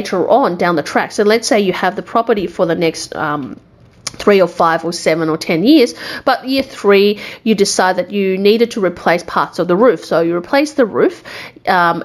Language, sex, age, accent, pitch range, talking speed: English, female, 30-49, Australian, 175-230 Hz, 215 wpm